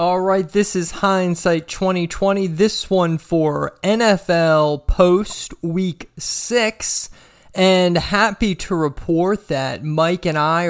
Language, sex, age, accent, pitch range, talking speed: English, male, 20-39, American, 150-185 Hz, 120 wpm